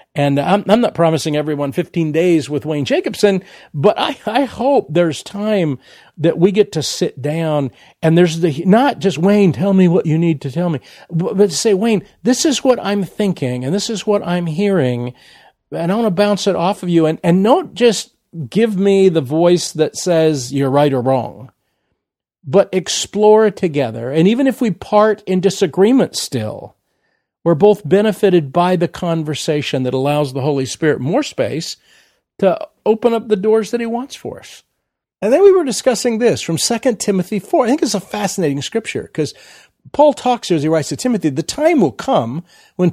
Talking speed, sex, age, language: 195 wpm, male, 50-69, English